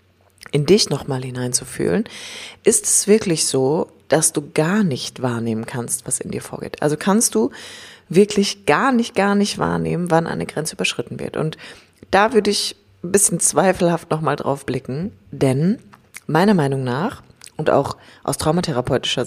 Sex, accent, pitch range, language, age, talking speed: female, German, 130-180 Hz, German, 30-49, 155 wpm